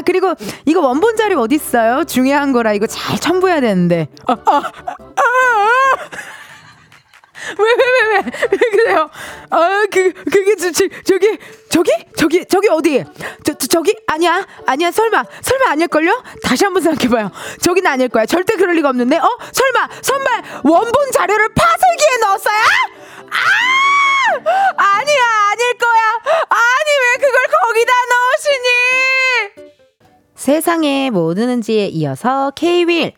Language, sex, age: Korean, female, 20-39